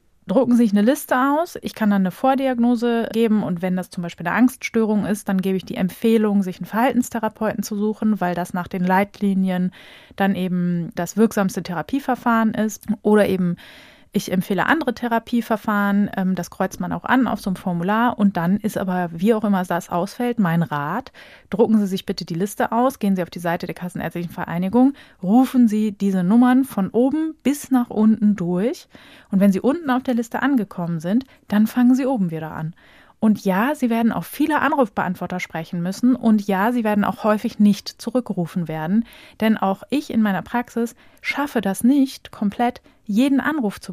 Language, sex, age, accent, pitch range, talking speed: German, female, 30-49, German, 190-240 Hz, 190 wpm